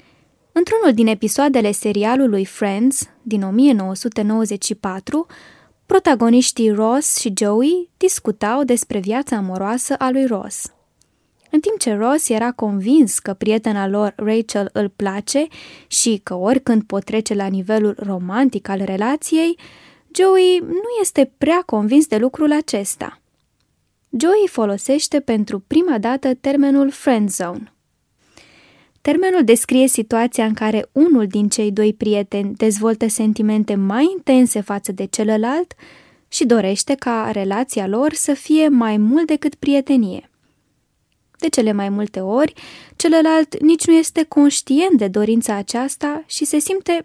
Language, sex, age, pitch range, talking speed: Romanian, female, 10-29, 215-290 Hz, 130 wpm